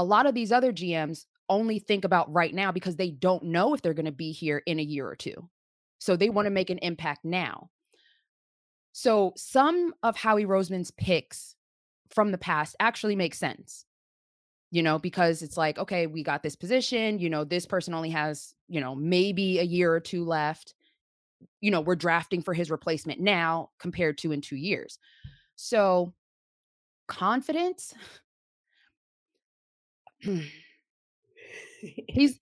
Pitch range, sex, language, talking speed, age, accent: 165-250 Hz, female, English, 160 wpm, 20-39, American